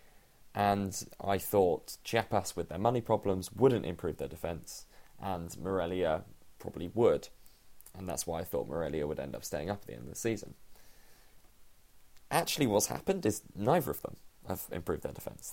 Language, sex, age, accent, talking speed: English, male, 20-39, British, 170 wpm